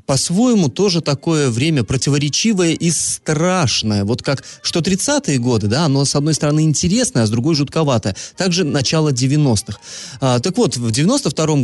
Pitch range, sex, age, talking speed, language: 115-155 Hz, male, 30-49, 155 wpm, Russian